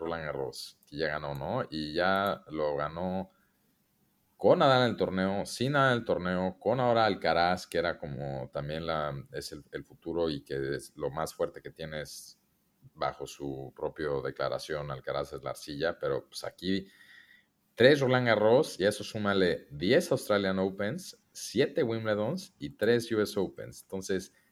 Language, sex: Spanish, male